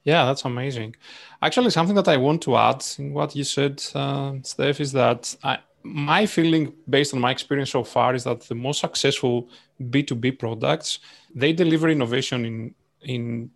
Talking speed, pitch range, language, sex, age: 170 wpm, 125-150 Hz, English, male, 30-49